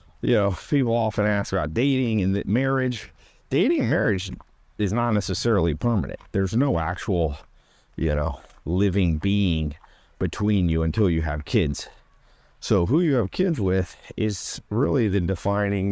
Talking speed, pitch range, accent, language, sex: 145 wpm, 90-115 Hz, American, English, male